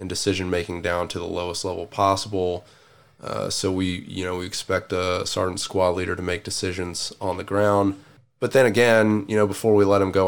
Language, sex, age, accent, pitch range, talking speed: English, male, 20-39, American, 95-110 Hz, 205 wpm